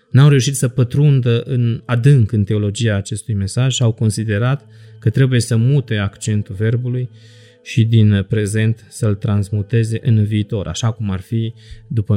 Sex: male